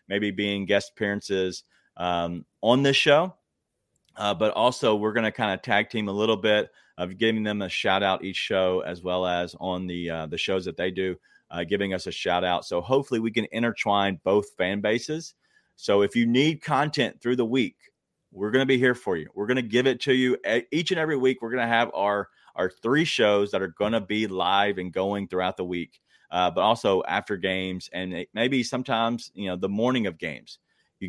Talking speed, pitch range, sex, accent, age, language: 220 wpm, 95-120 Hz, male, American, 30-49, English